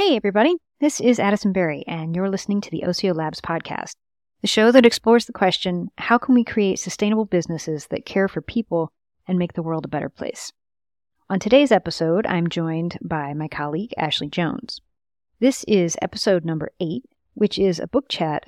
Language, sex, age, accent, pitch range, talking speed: English, female, 40-59, American, 165-215 Hz, 185 wpm